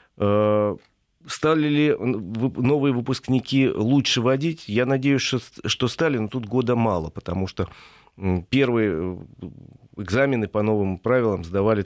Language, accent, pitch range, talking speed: Russian, native, 95-125 Hz, 110 wpm